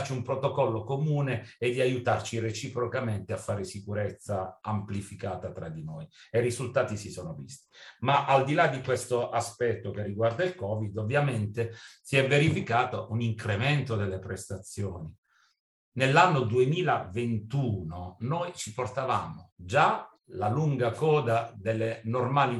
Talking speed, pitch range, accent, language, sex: 135 wpm, 110-140 Hz, native, Italian, male